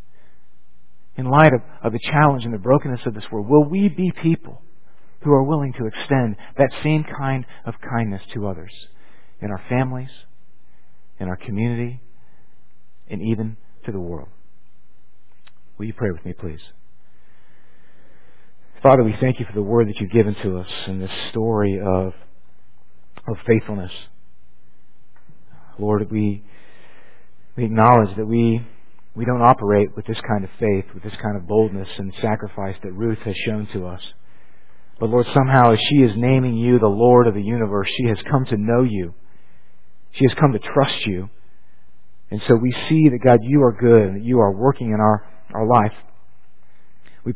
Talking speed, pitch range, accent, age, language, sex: 170 wpm, 100-125 Hz, American, 50-69, English, male